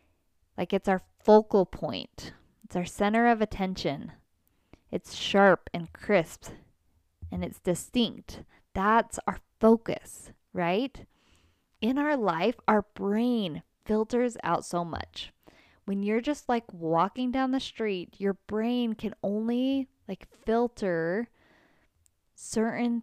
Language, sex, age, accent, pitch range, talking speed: English, female, 10-29, American, 180-235 Hz, 115 wpm